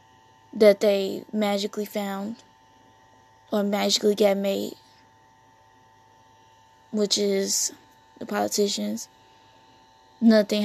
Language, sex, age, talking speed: English, female, 10-29, 75 wpm